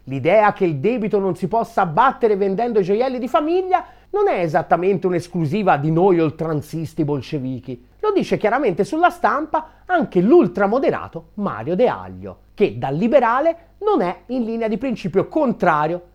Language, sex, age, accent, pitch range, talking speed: Italian, male, 30-49, native, 165-260 Hz, 150 wpm